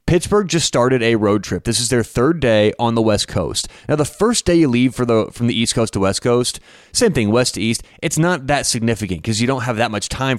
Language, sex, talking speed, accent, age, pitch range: English, male, 265 wpm, American, 30-49, 105-140 Hz